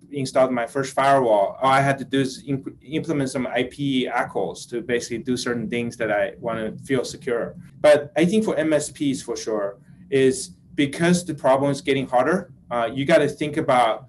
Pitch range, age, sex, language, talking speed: 125-150 Hz, 30-49, male, English, 195 wpm